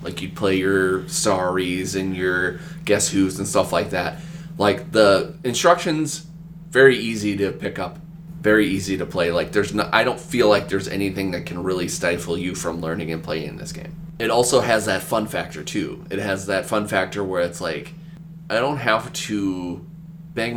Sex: male